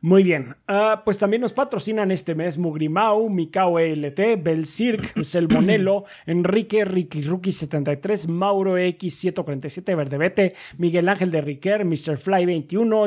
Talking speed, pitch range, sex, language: 140 wpm, 155-200 Hz, male, Spanish